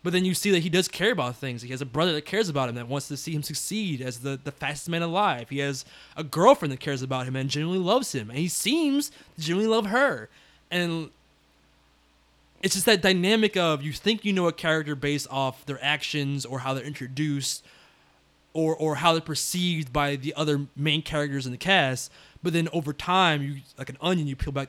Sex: male